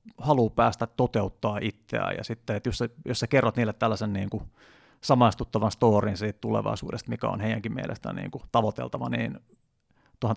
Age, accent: 30-49, native